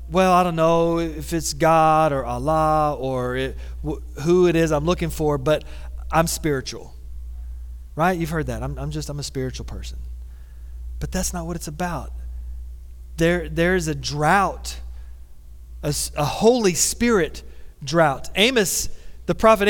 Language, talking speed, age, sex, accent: English, 155 wpm, 30-49, male, American